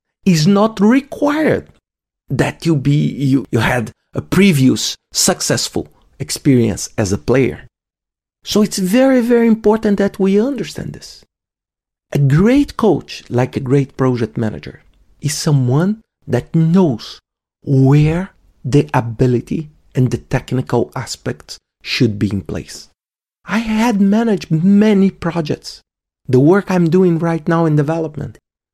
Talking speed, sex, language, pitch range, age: 125 wpm, male, English, 145-240 Hz, 40-59